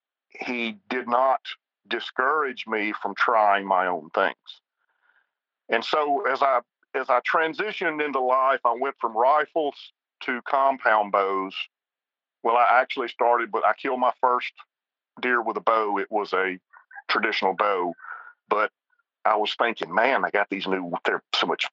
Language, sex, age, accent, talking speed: English, male, 50-69, American, 155 wpm